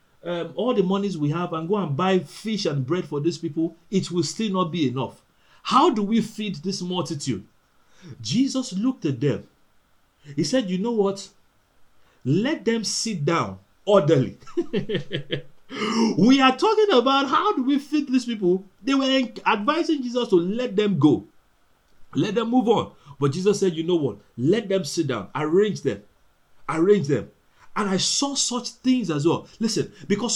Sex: male